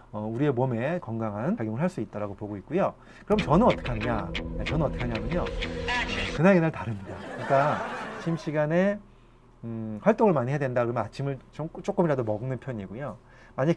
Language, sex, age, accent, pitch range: Korean, male, 30-49, native, 115-165 Hz